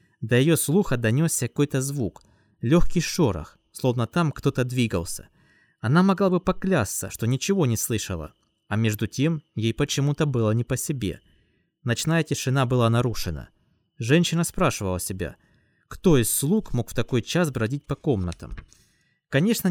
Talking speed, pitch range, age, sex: 145 wpm, 105-145 Hz, 20-39, male